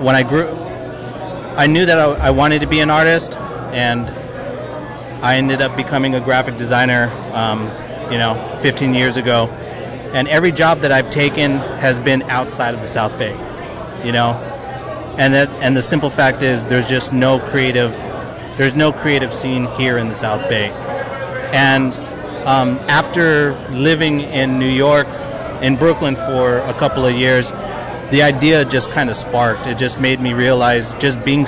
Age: 30-49